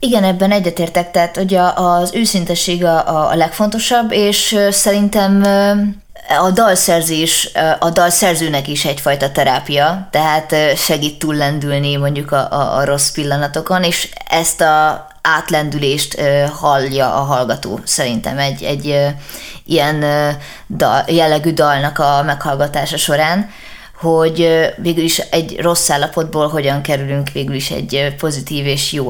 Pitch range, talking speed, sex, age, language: 145-170 Hz, 120 wpm, female, 20-39, Hungarian